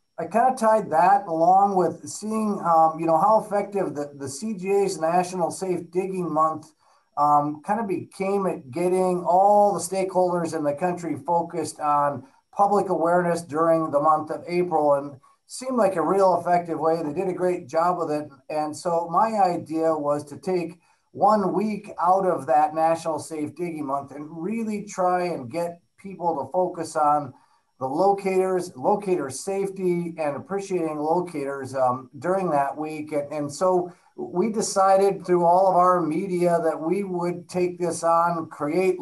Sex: male